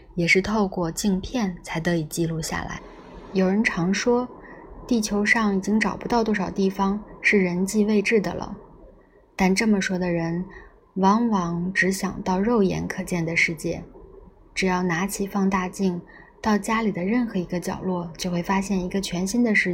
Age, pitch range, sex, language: 20-39, 180-210 Hz, female, Chinese